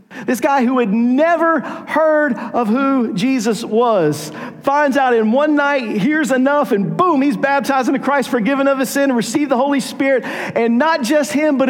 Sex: male